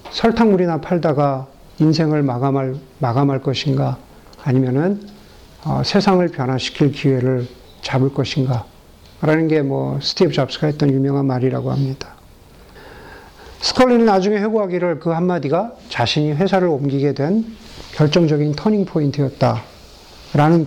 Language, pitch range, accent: Korean, 140-205 Hz, native